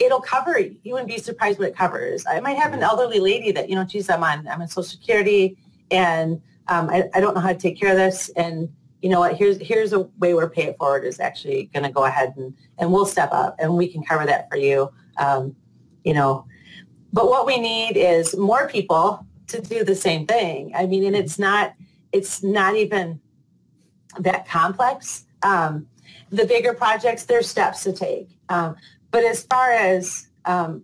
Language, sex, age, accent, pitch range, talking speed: English, female, 30-49, American, 170-215 Hz, 210 wpm